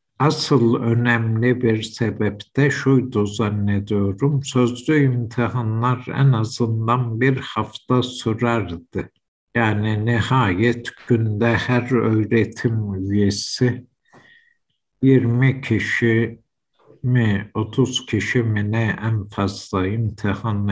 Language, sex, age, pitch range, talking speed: Turkish, male, 60-79, 105-125 Hz, 85 wpm